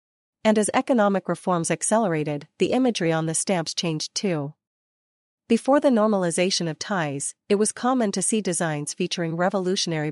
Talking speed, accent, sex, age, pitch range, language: 150 wpm, American, female, 40-59, 165-205 Hz, English